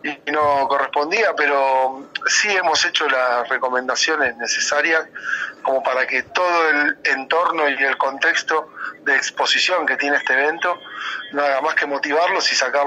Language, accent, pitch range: Spanish, Argentinian, 130-155 Hz